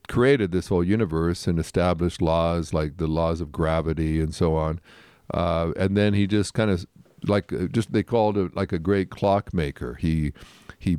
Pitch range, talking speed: 85-105 Hz, 180 wpm